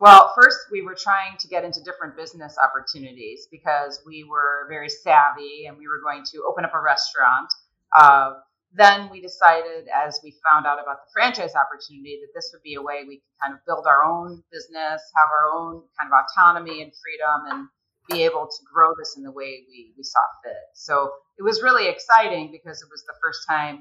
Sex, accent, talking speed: female, American, 210 wpm